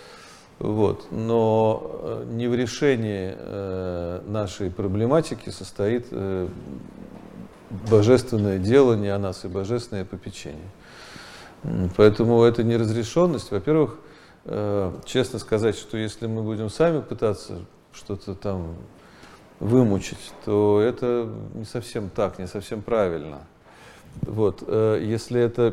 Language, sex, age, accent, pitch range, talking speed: Russian, male, 40-59, native, 95-120 Hz, 100 wpm